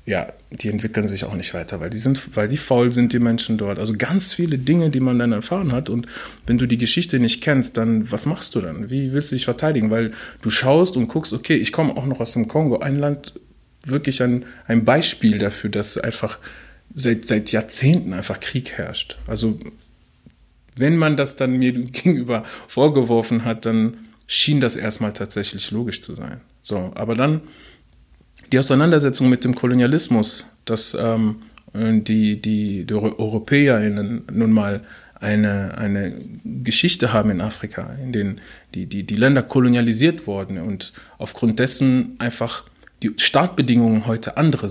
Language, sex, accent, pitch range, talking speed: German, male, German, 105-130 Hz, 170 wpm